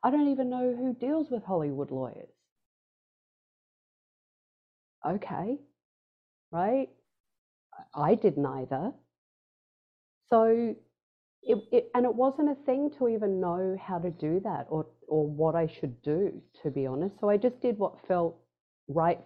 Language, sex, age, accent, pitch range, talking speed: English, female, 40-59, Australian, 145-215 Hz, 135 wpm